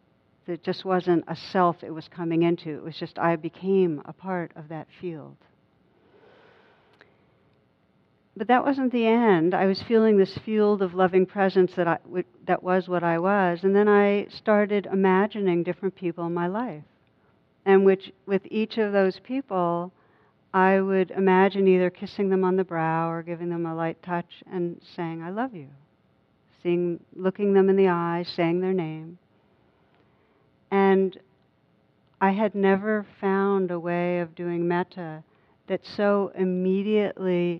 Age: 60-79